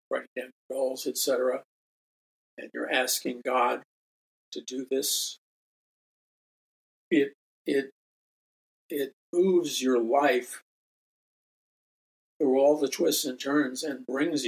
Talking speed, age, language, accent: 110 wpm, 50-69, English, American